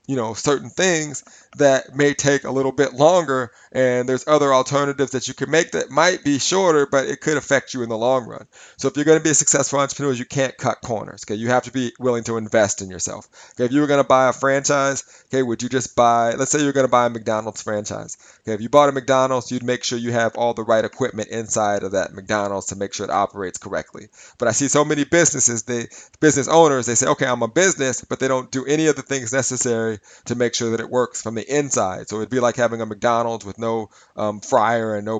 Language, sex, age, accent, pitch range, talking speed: English, male, 30-49, American, 110-135 Hz, 250 wpm